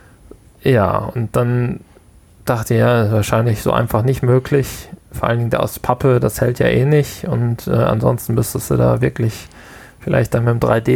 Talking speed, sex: 175 wpm, male